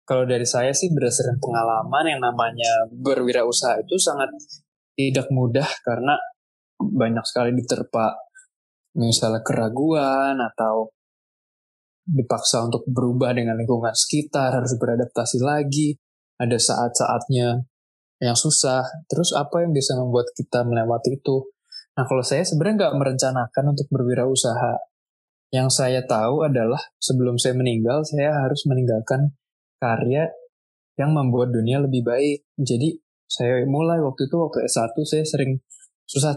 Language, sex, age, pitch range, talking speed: Indonesian, male, 20-39, 125-150 Hz, 125 wpm